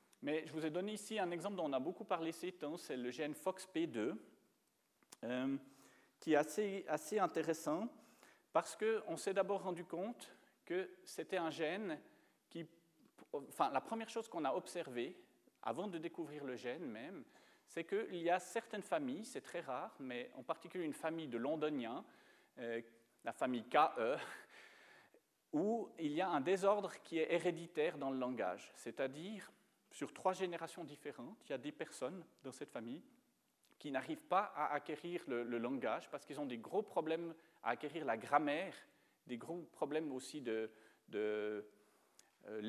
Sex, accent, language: male, French, French